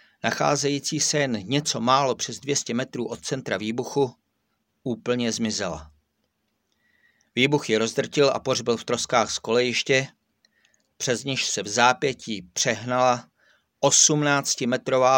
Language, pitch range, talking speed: Czech, 110-140 Hz, 115 wpm